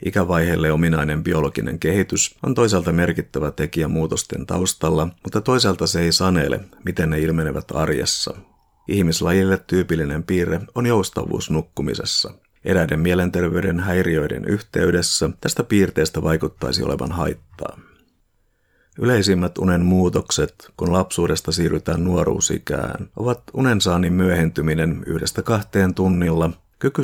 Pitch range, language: 80-95 Hz, Finnish